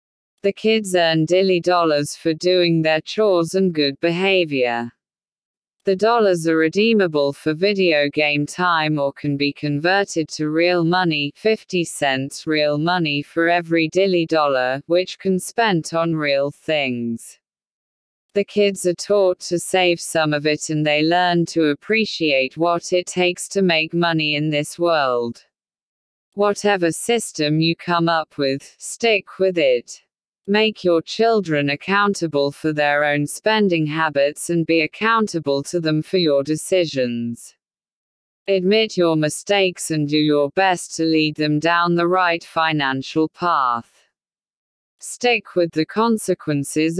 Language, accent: Hindi, British